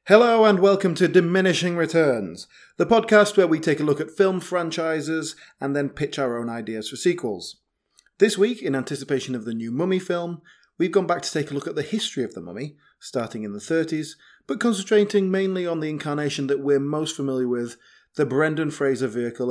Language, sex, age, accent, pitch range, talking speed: English, male, 30-49, British, 130-180 Hz, 200 wpm